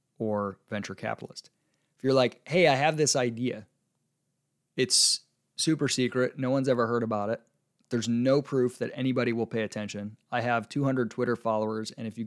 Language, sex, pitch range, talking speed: English, male, 115-140 Hz, 175 wpm